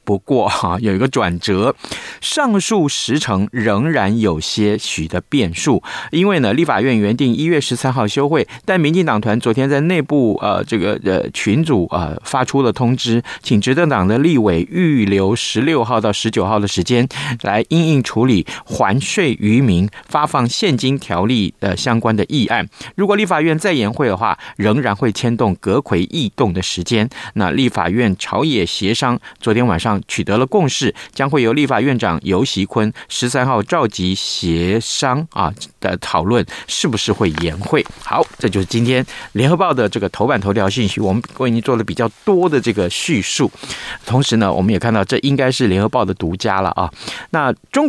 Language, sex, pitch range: Chinese, male, 100-140 Hz